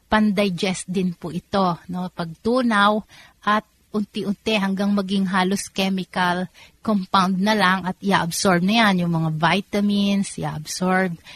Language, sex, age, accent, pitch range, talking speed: Filipino, female, 30-49, native, 175-210 Hz, 120 wpm